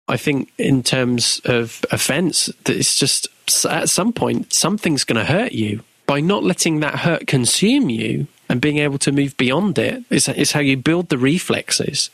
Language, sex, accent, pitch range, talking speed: English, male, British, 115-140 Hz, 185 wpm